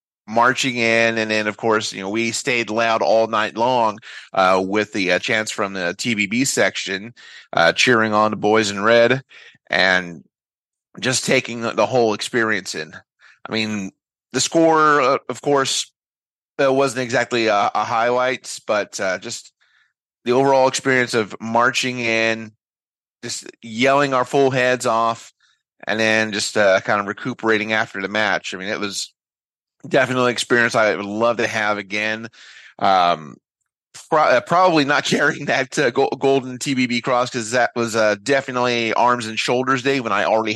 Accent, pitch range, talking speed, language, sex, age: American, 105-125 Hz, 160 wpm, English, male, 30-49